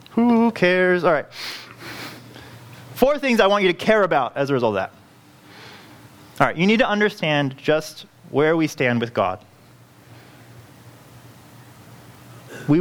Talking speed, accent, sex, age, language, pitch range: 140 wpm, American, male, 30-49, English, 125-175 Hz